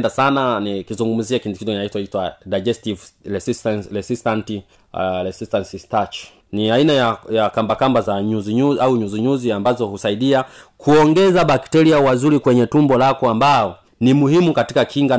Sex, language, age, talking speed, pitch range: male, Swahili, 30-49, 140 wpm, 105-130 Hz